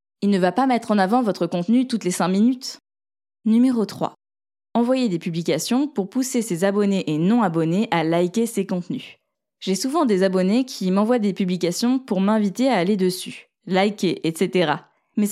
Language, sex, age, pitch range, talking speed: French, female, 20-39, 180-230 Hz, 170 wpm